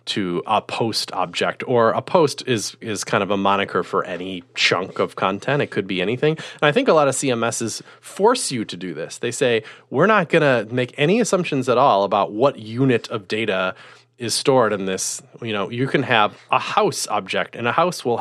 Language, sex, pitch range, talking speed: English, male, 105-130 Hz, 220 wpm